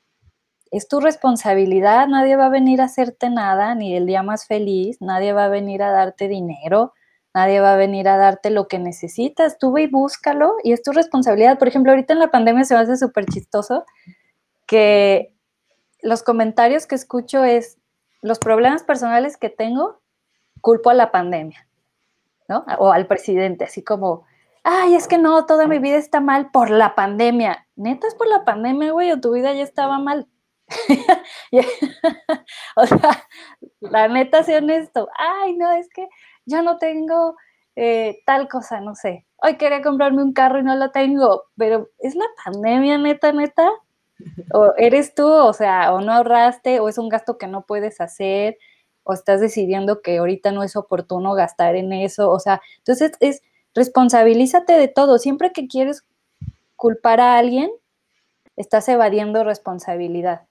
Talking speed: 170 wpm